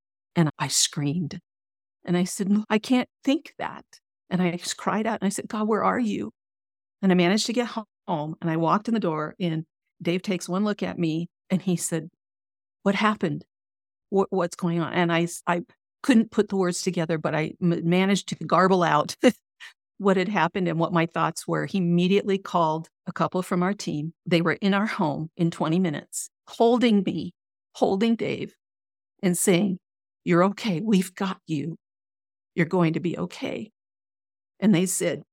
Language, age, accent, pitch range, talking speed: English, 50-69, American, 155-195 Hz, 180 wpm